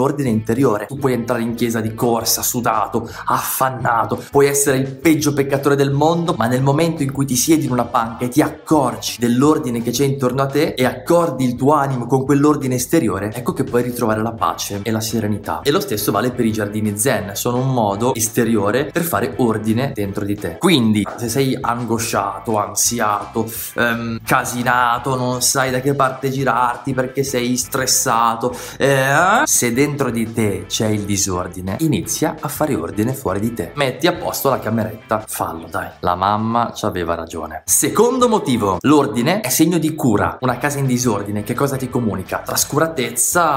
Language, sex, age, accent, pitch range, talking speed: Italian, male, 20-39, native, 110-135 Hz, 180 wpm